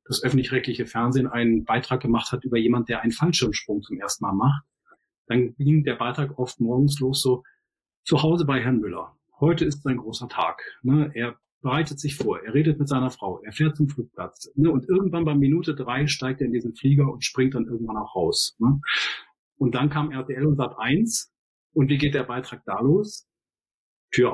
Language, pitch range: German, 120-140 Hz